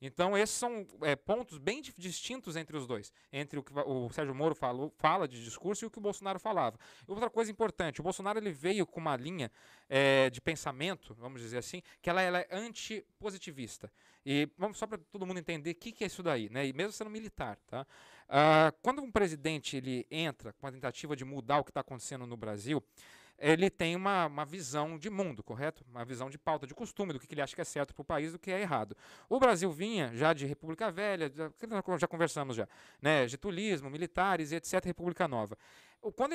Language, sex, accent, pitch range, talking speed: Portuguese, male, Brazilian, 145-205 Hz, 215 wpm